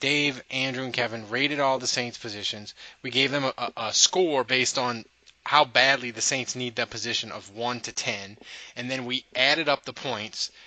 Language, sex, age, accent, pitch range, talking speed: English, male, 20-39, American, 120-145 Hz, 195 wpm